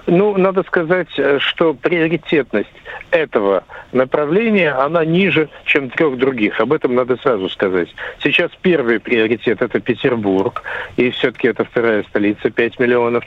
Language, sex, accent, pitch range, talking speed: Russian, male, native, 115-160 Hz, 135 wpm